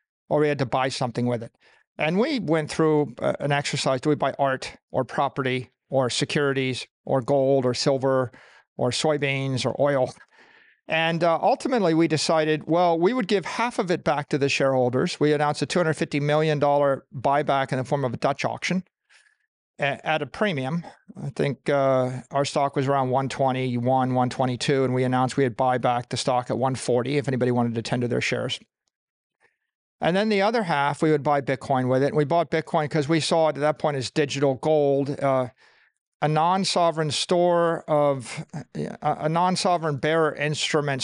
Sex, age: male, 40-59